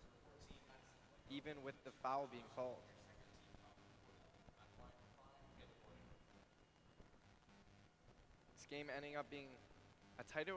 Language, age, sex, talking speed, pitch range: English, 20-39, male, 75 wpm, 115-145 Hz